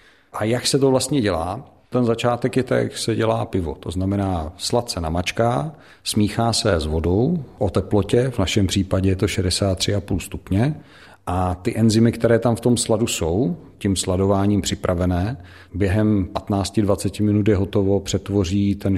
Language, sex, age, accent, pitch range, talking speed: Czech, male, 50-69, native, 95-110 Hz, 160 wpm